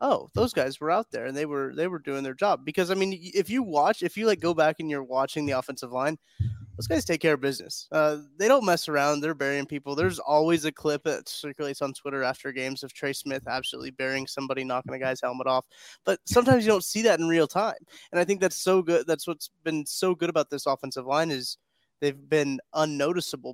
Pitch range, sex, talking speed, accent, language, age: 135-165 Hz, male, 240 wpm, American, English, 20-39